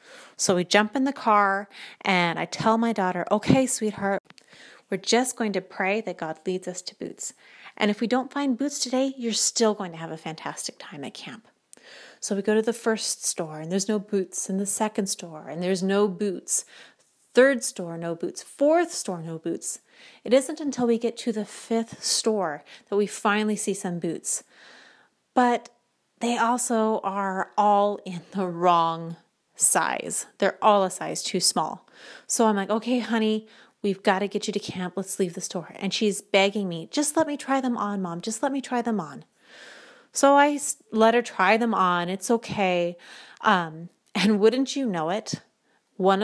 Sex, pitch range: female, 185-235 Hz